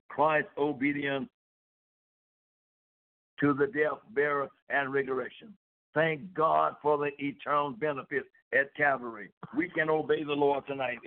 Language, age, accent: English, 60-79, American